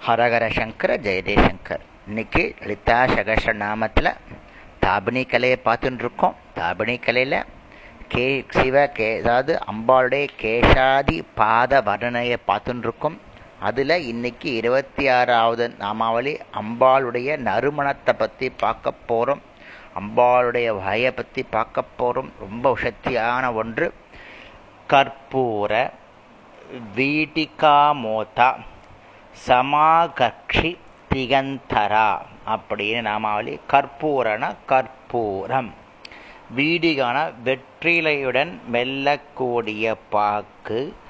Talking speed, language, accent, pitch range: 75 wpm, Tamil, native, 115-135 Hz